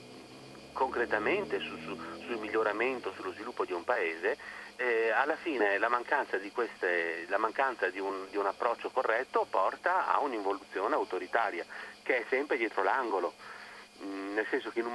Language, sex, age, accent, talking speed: Italian, male, 40-59, native, 160 wpm